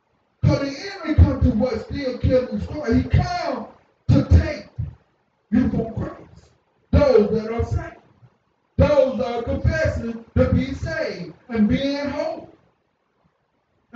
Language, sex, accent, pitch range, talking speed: English, male, American, 215-285 Hz, 130 wpm